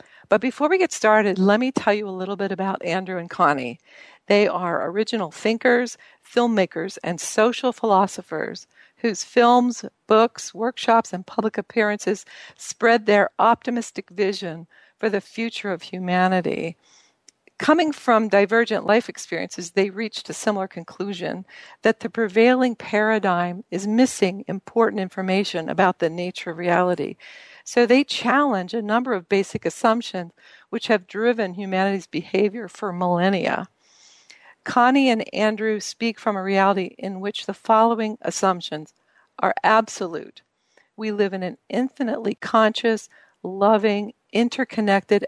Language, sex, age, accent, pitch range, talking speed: English, female, 50-69, American, 190-230 Hz, 135 wpm